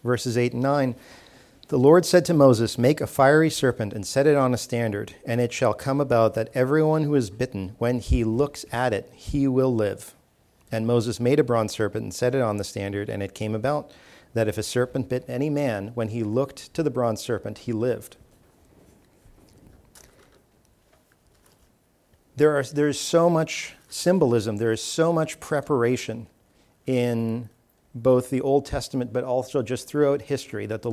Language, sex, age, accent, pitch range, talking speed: English, male, 40-59, American, 115-140 Hz, 180 wpm